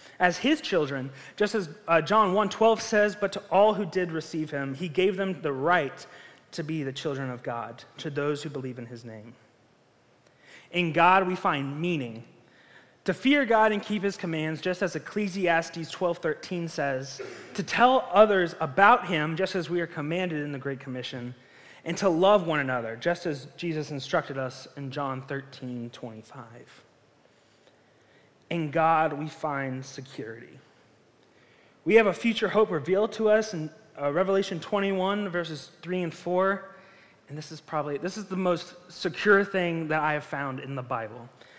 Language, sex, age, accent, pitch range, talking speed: English, male, 30-49, American, 140-190 Hz, 175 wpm